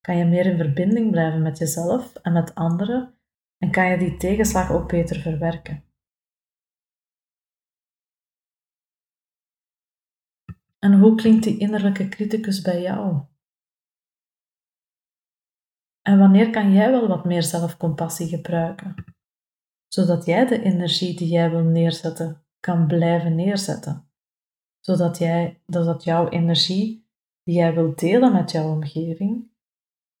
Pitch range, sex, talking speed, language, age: 165-205 Hz, female, 115 wpm, Dutch, 30-49